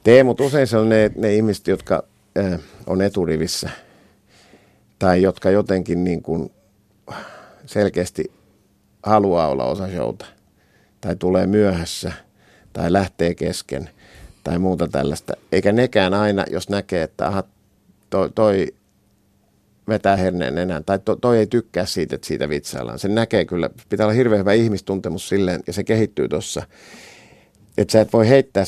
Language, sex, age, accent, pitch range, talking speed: Finnish, male, 50-69, native, 90-105 Hz, 145 wpm